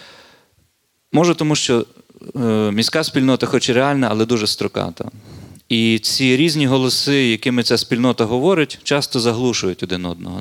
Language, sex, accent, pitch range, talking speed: Ukrainian, male, native, 105-135 Hz, 135 wpm